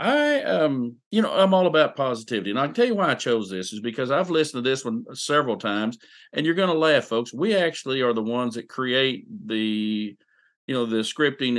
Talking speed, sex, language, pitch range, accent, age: 225 wpm, male, English, 115-175 Hz, American, 50-69